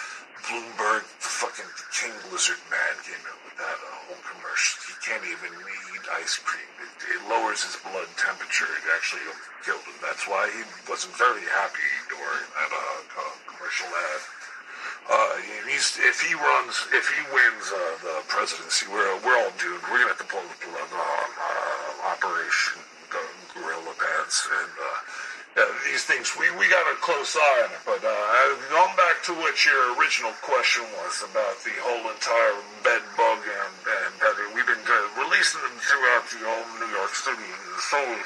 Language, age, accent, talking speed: English, 50-69, American, 175 wpm